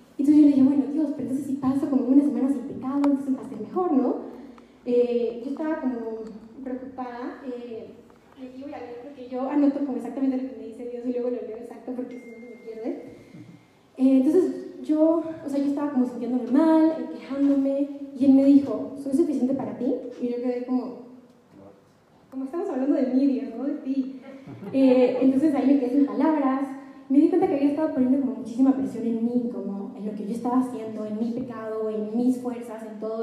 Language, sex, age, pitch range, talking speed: Spanish, female, 20-39, 235-275 Hz, 215 wpm